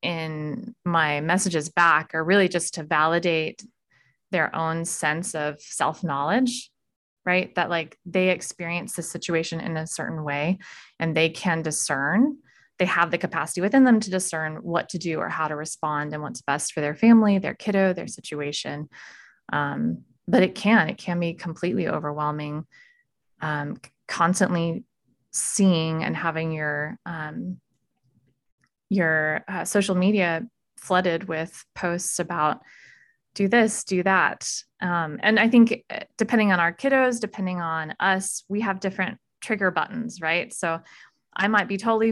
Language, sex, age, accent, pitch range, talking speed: English, female, 20-39, American, 160-195 Hz, 150 wpm